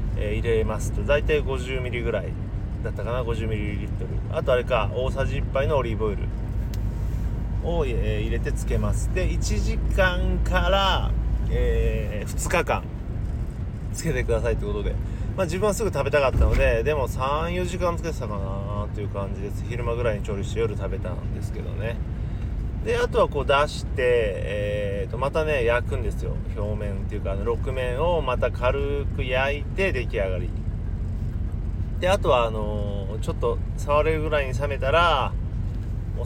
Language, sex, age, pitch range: Japanese, male, 30-49, 100-115 Hz